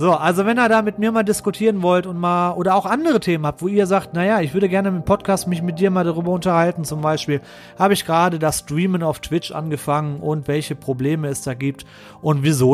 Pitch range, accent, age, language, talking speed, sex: 135-180 Hz, German, 30-49, German, 235 wpm, male